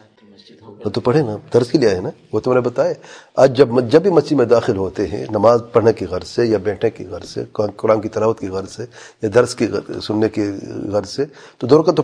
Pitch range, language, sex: 115-150 Hz, English, male